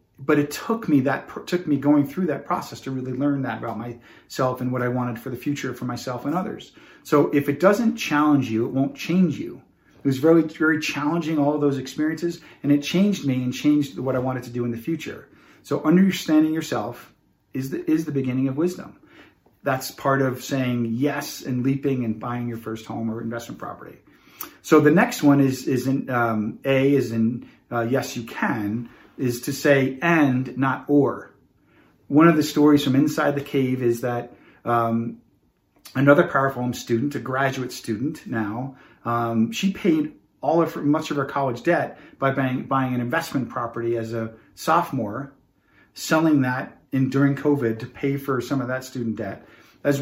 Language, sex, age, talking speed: English, male, 40-59, 190 wpm